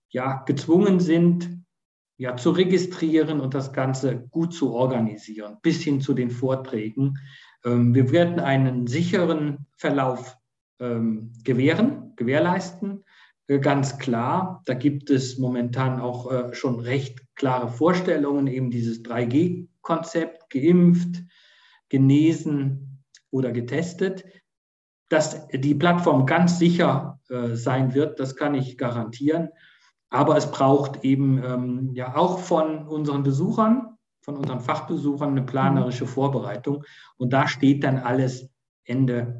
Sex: male